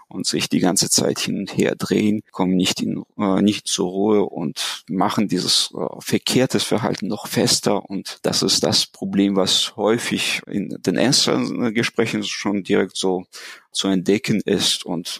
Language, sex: German, male